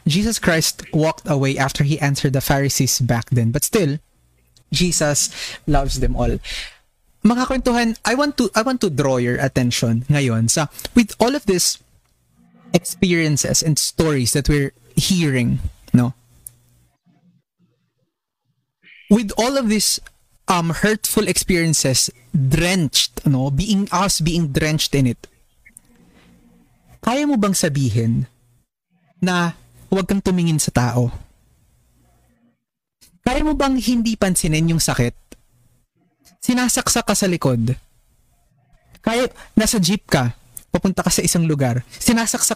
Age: 20-39